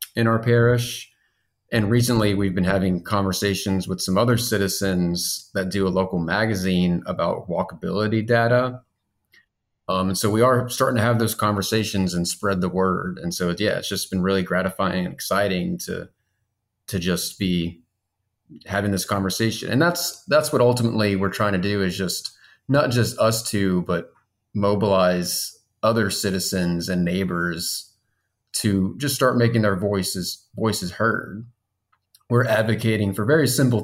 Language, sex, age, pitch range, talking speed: English, male, 30-49, 95-110 Hz, 155 wpm